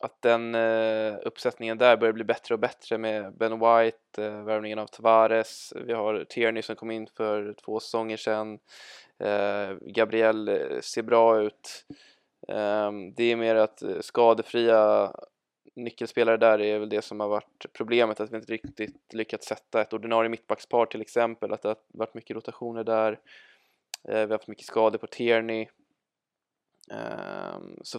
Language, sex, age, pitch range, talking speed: Swedish, male, 20-39, 110-115 Hz, 160 wpm